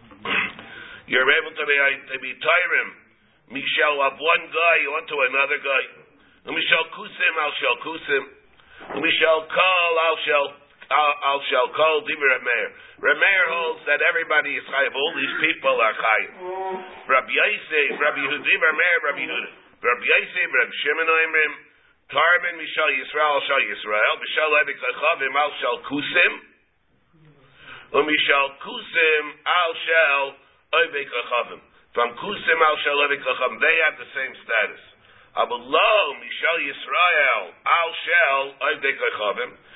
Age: 50-69